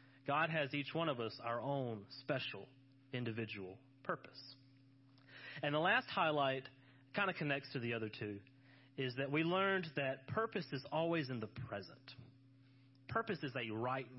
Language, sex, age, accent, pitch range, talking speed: English, male, 30-49, American, 125-140 Hz, 155 wpm